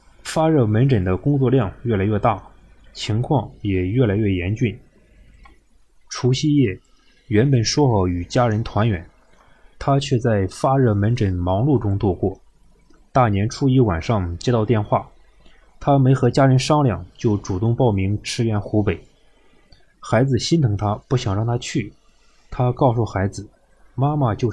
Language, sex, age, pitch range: Chinese, male, 20-39, 100-130 Hz